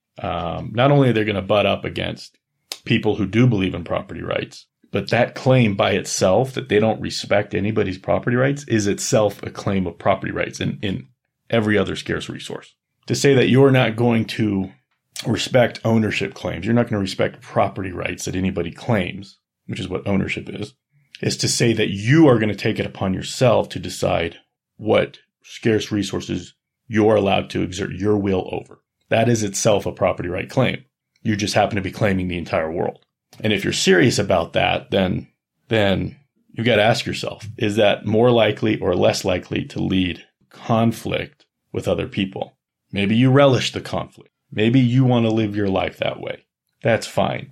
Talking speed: 185 wpm